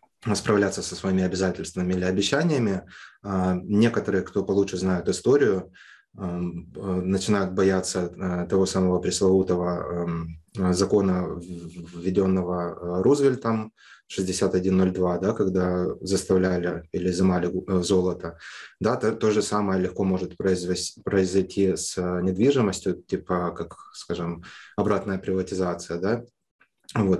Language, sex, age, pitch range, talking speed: Russian, male, 20-39, 90-100 Hz, 95 wpm